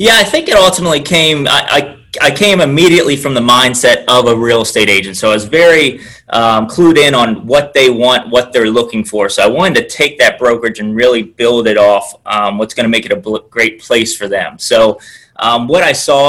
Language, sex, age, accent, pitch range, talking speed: English, male, 30-49, American, 110-130 Hz, 230 wpm